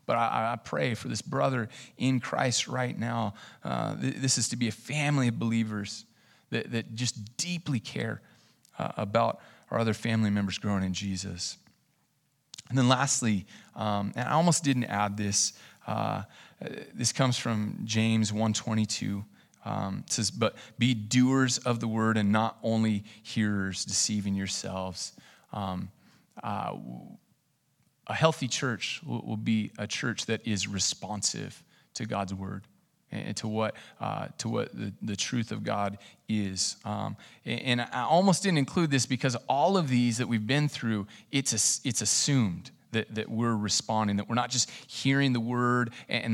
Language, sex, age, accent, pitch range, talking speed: English, male, 30-49, American, 105-125 Hz, 160 wpm